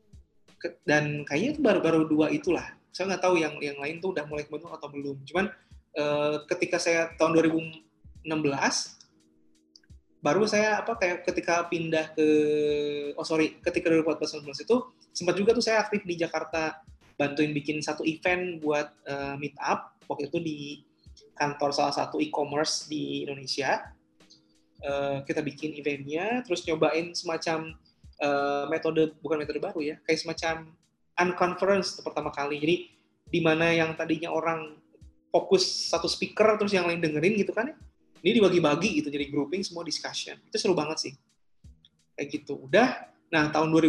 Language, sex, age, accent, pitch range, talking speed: Indonesian, male, 20-39, native, 145-170 Hz, 150 wpm